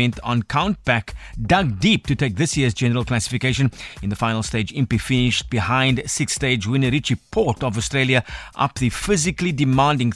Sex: male